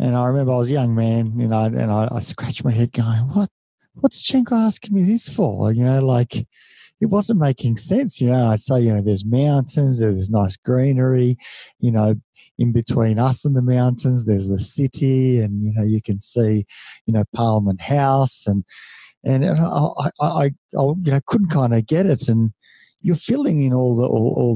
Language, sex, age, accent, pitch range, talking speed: English, male, 50-69, Australian, 115-135 Hz, 205 wpm